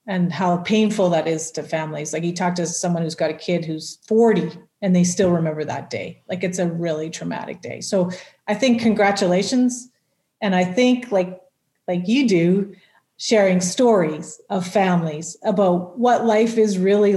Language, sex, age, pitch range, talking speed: English, female, 40-59, 170-210 Hz, 175 wpm